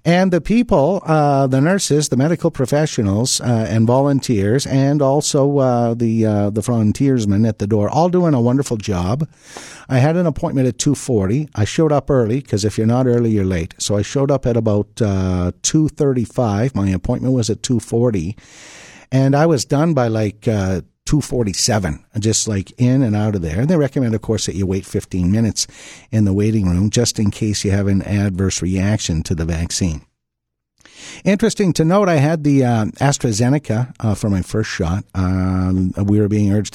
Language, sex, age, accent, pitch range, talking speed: English, male, 50-69, American, 100-140 Hz, 190 wpm